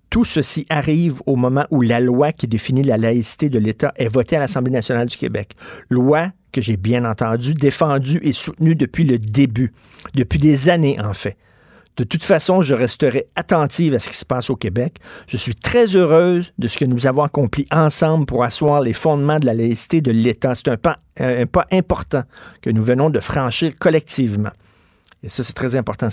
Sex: male